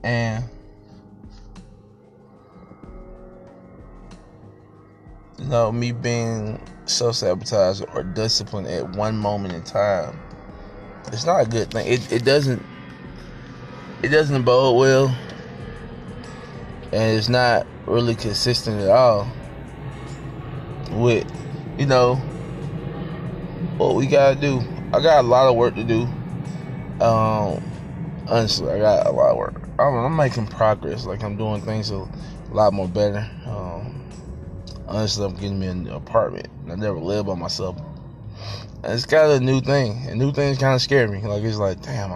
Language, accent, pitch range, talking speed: English, American, 100-130 Hz, 140 wpm